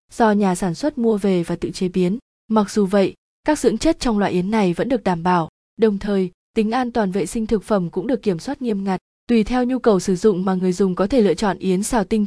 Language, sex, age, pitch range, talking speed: Vietnamese, female, 20-39, 190-225 Hz, 270 wpm